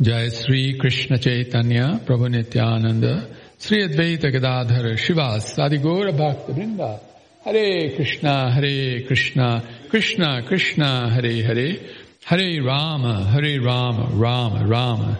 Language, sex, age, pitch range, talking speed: English, male, 60-79, 115-135 Hz, 105 wpm